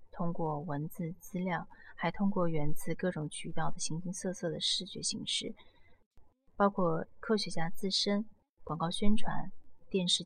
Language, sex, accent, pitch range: Chinese, female, native, 165-205 Hz